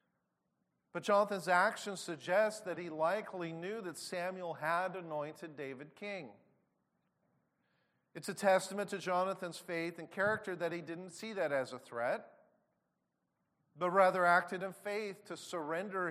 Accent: American